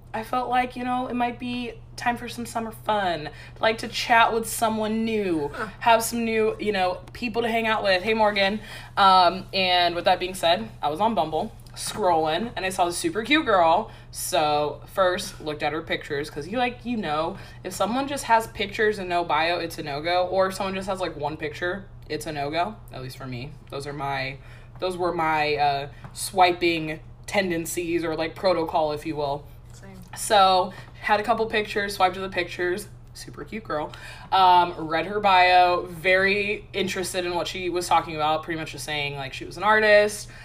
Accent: American